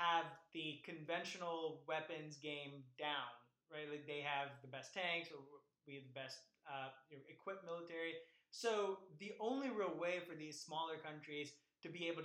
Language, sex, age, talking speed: English, male, 20-39, 160 wpm